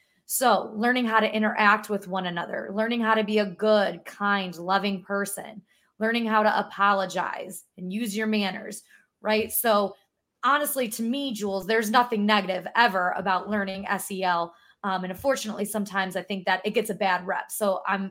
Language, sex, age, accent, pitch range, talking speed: English, female, 20-39, American, 195-235 Hz, 170 wpm